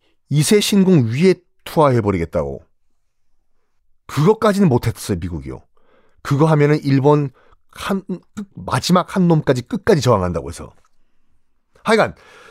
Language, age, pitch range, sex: Korean, 40-59, 135-205 Hz, male